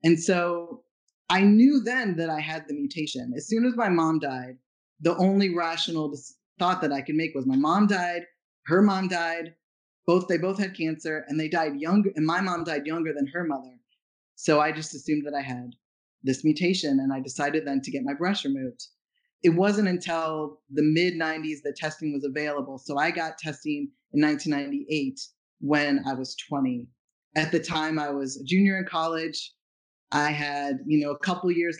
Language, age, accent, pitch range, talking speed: English, 20-39, American, 140-170 Hz, 195 wpm